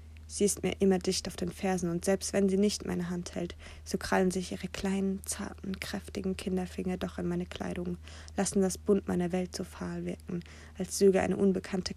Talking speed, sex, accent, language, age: 200 wpm, female, German, German, 20-39